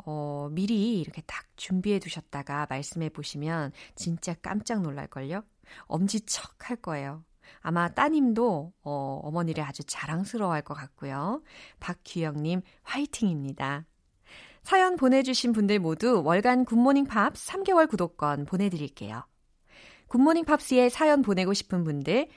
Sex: female